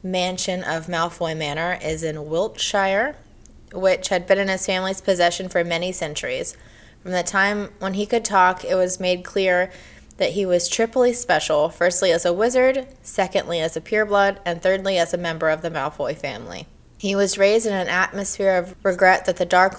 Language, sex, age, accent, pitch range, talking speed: English, female, 20-39, American, 170-195 Hz, 185 wpm